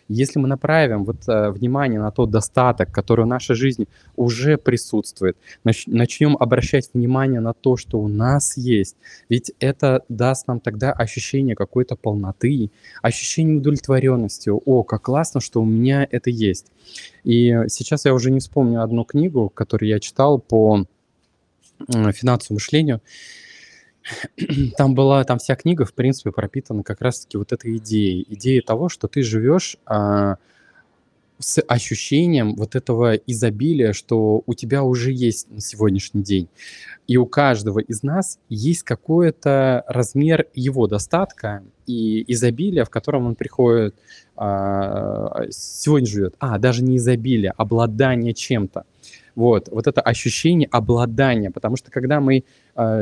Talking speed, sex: 140 wpm, male